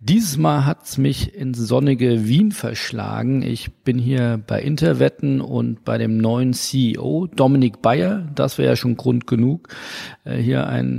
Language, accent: German, German